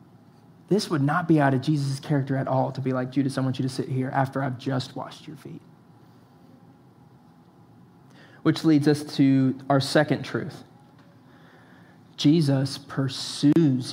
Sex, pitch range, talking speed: male, 135-165 Hz, 150 wpm